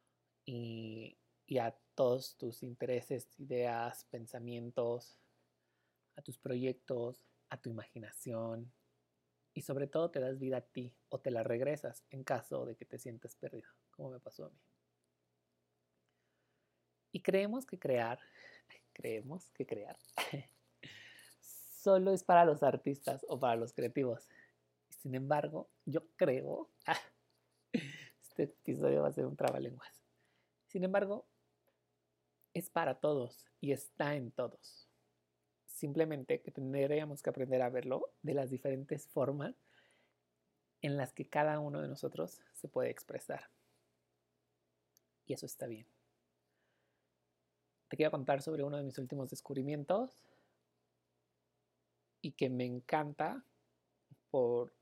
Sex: male